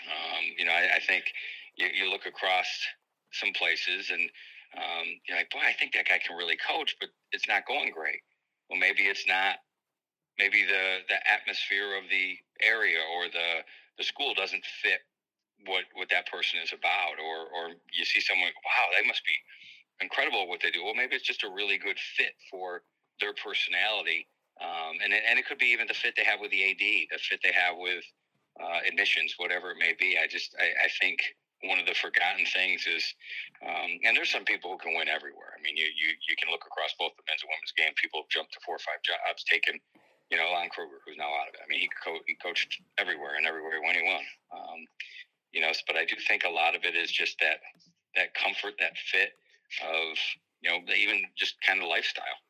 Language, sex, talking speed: English, male, 220 wpm